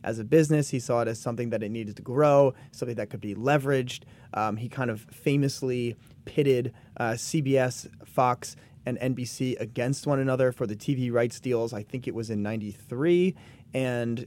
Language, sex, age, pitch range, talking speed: English, male, 30-49, 110-135 Hz, 185 wpm